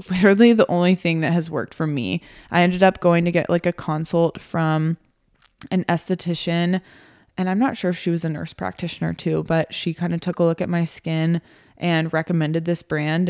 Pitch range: 160-185 Hz